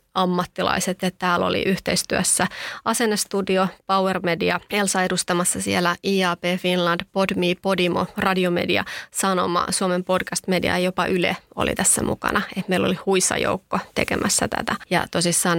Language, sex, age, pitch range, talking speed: Finnish, female, 30-49, 180-210 Hz, 135 wpm